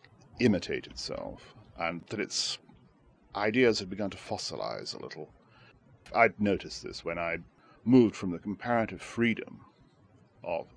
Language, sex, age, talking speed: English, male, 40-59, 130 wpm